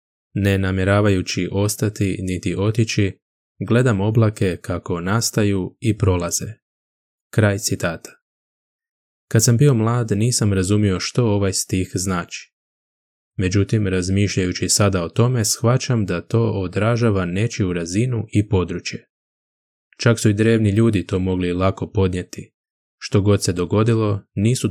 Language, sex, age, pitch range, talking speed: Croatian, male, 10-29, 95-110 Hz, 120 wpm